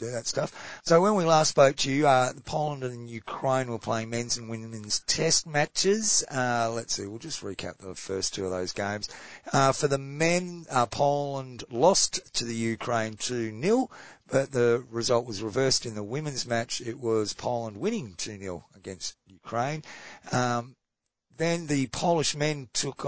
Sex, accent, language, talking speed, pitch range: male, Australian, English, 170 wpm, 115-145 Hz